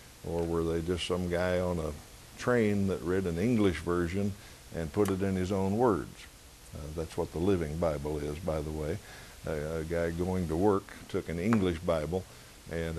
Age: 60-79